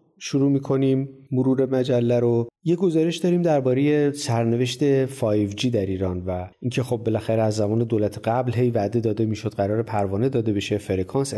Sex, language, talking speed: male, Persian, 160 wpm